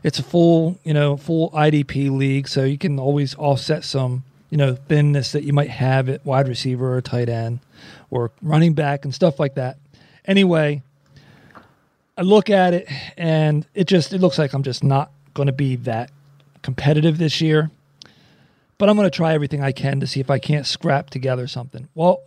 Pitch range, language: 140-165 Hz, English